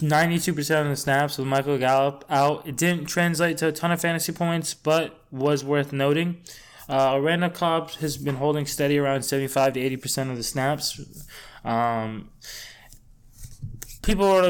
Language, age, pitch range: English, 20-39, 120-150 Hz